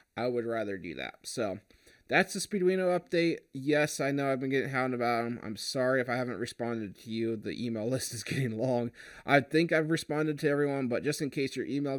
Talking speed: 225 wpm